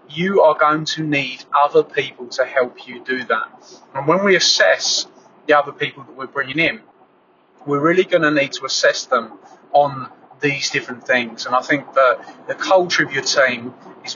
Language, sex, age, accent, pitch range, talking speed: English, male, 30-49, British, 145-195 Hz, 190 wpm